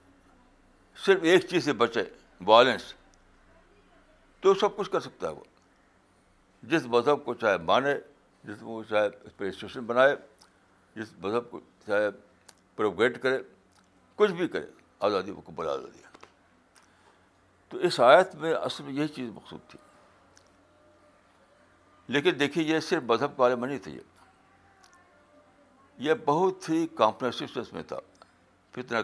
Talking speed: 130 wpm